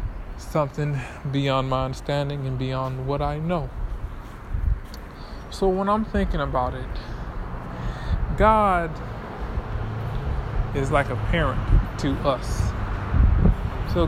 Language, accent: English, American